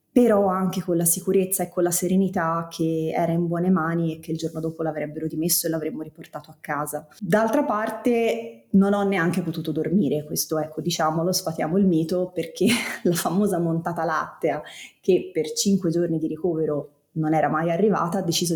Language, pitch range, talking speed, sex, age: Italian, 160-185 Hz, 180 wpm, female, 20-39